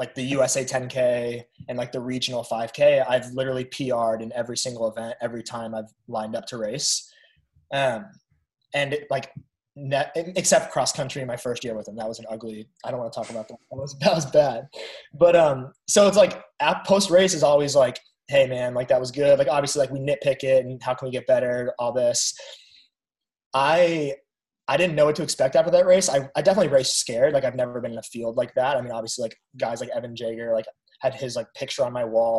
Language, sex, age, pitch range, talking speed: English, male, 20-39, 115-140 Hz, 230 wpm